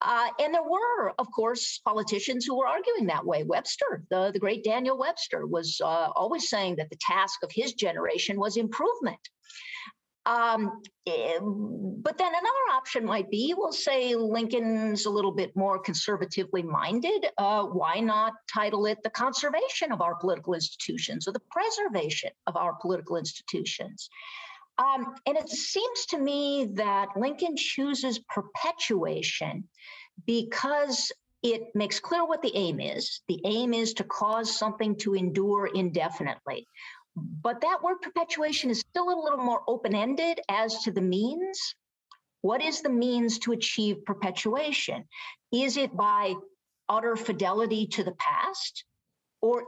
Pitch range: 205-310 Hz